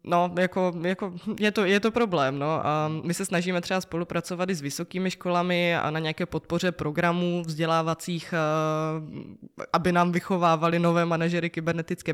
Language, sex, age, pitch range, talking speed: Czech, female, 20-39, 155-175 Hz, 155 wpm